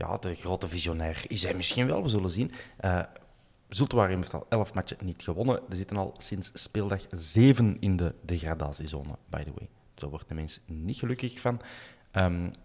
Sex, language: male, Dutch